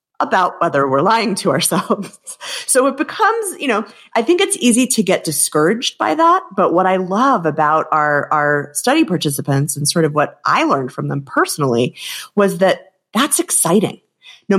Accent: American